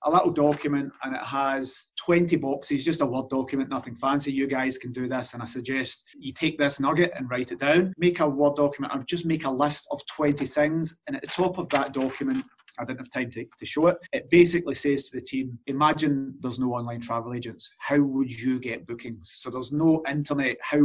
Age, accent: 30-49, British